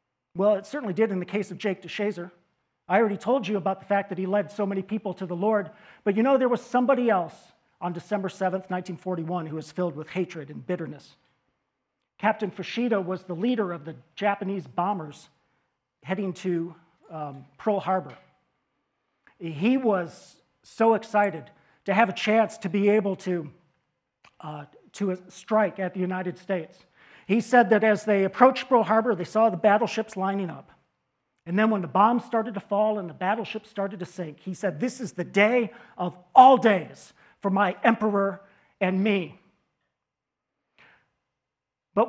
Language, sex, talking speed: English, male, 170 wpm